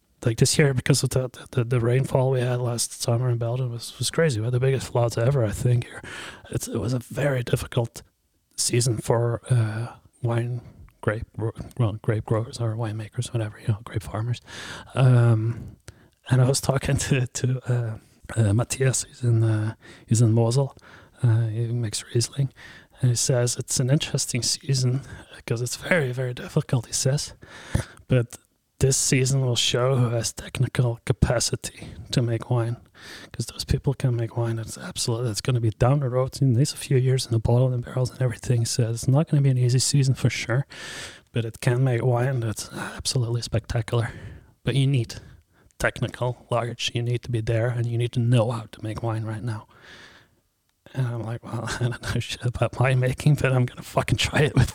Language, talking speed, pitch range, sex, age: English, 195 wpm, 115-130 Hz, male, 30-49